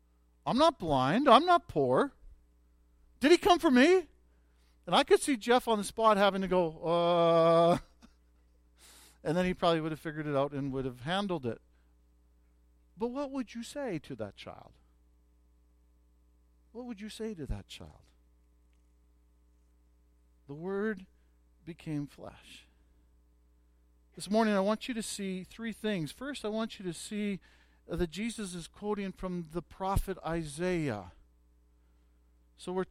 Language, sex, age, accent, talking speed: English, male, 50-69, American, 150 wpm